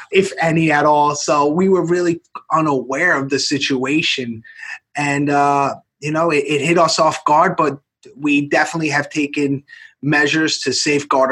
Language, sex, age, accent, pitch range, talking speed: English, male, 30-49, American, 140-170 Hz, 160 wpm